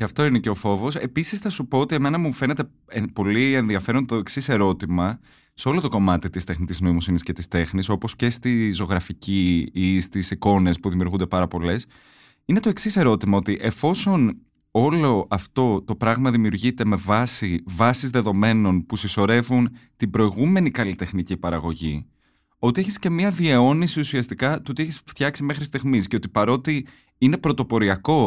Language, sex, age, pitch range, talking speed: Greek, male, 20-39, 100-140 Hz, 165 wpm